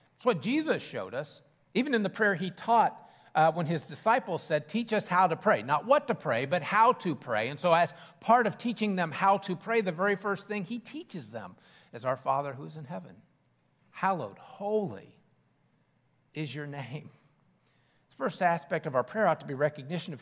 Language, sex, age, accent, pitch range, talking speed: English, male, 50-69, American, 145-185 Hz, 205 wpm